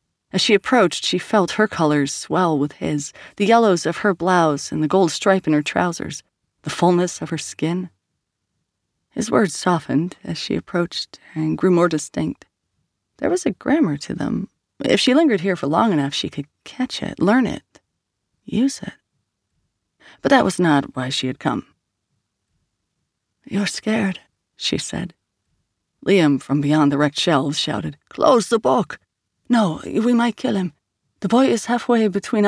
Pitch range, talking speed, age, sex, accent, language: 145-200 Hz, 165 wpm, 30-49, female, American, English